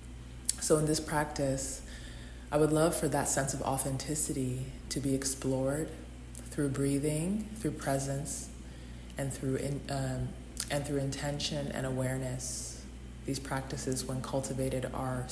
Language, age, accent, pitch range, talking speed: English, 20-39, American, 125-140 Hz, 130 wpm